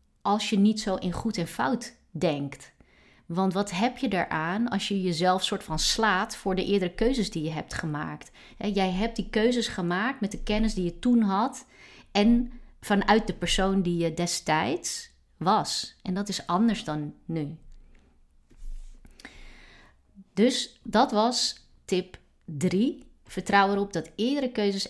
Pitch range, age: 155-205 Hz, 30-49